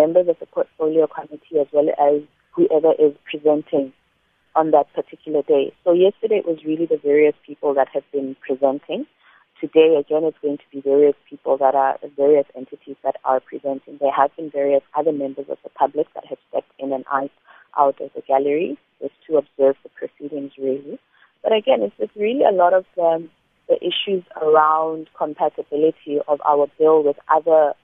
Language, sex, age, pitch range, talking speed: English, female, 30-49, 145-175 Hz, 180 wpm